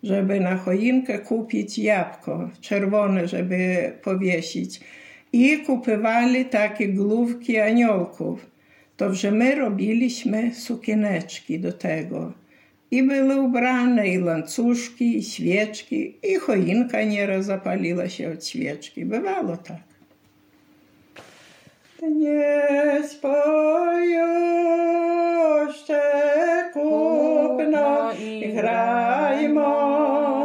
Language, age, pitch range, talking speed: Polish, 60-79, 225-315 Hz, 80 wpm